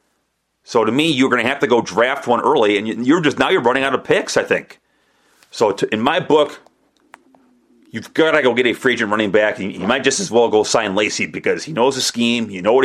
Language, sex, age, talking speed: English, male, 30-49, 255 wpm